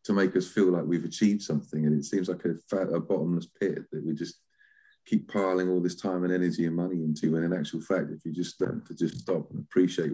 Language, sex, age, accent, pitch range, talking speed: English, male, 40-59, British, 85-110 Hz, 250 wpm